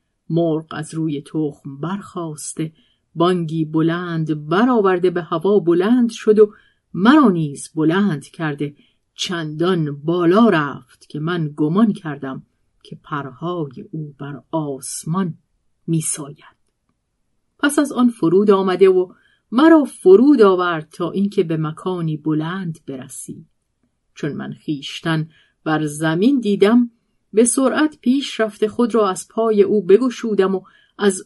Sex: female